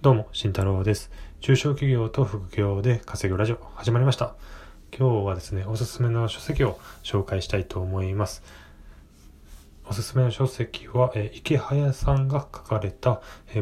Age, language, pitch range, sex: 20-39, Japanese, 95-120 Hz, male